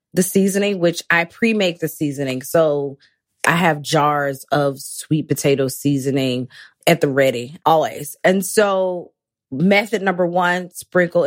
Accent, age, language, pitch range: American, 20-39, English, 150-185 Hz